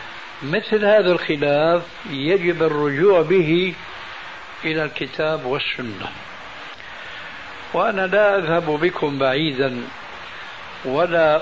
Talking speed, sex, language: 80 wpm, male, Arabic